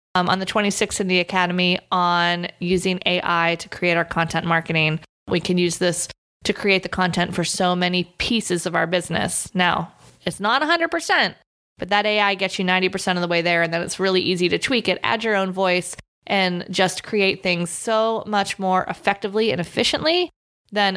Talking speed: 200 wpm